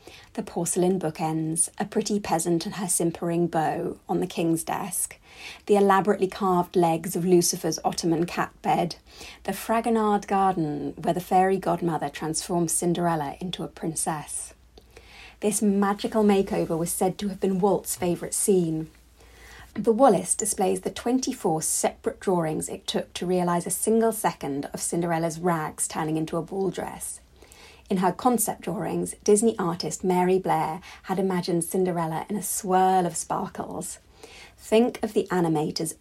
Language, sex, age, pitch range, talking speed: English, female, 30-49, 165-205 Hz, 145 wpm